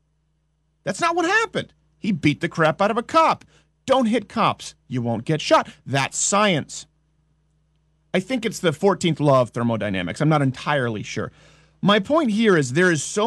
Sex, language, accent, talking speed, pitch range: male, English, American, 180 wpm, 150-220 Hz